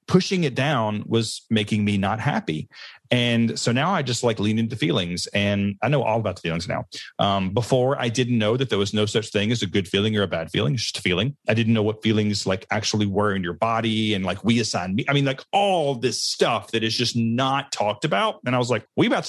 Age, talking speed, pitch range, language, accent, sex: 30-49, 255 wpm, 105-130 Hz, English, American, male